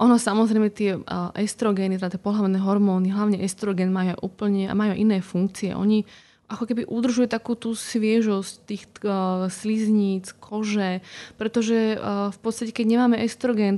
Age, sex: 20-39, female